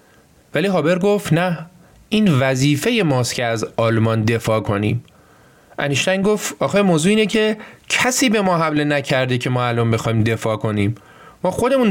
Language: Persian